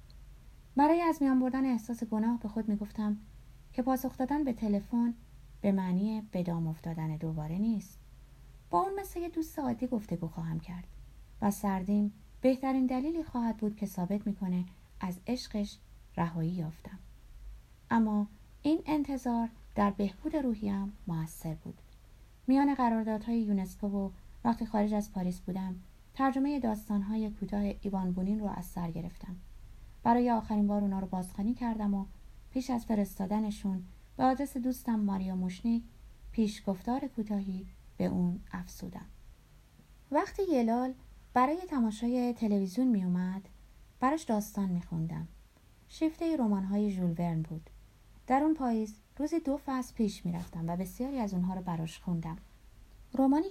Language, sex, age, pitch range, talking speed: Persian, female, 30-49, 180-245 Hz, 140 wpm